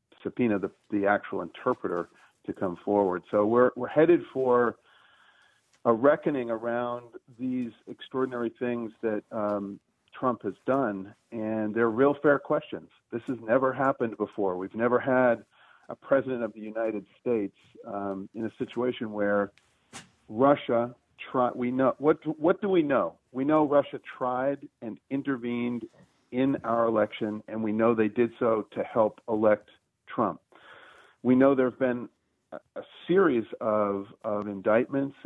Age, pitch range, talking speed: 50-69, 105-135 Hz, 145 wpm